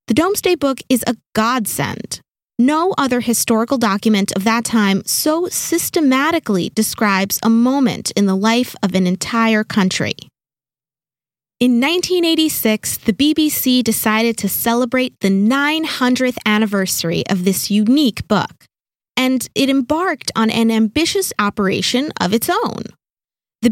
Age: 20-39